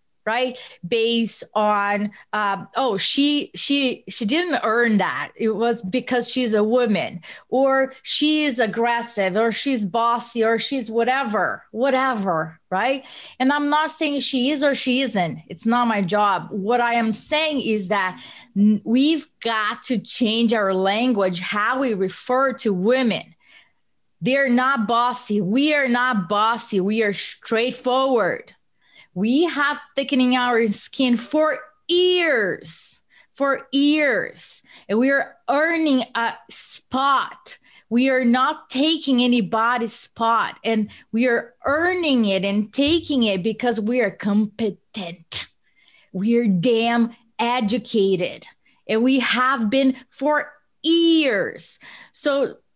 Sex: female